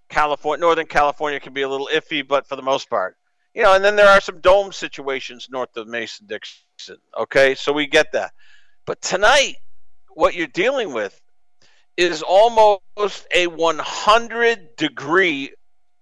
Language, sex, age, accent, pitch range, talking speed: English, male, 50-69, American, 155-240 Hz, 155 wpm